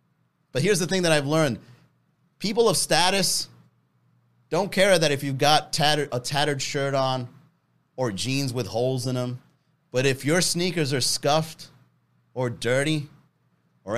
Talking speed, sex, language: 155 wpm, male, English